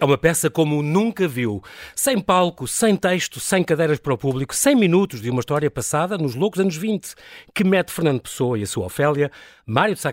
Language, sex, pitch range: Portuguese, male, 125-175 Hz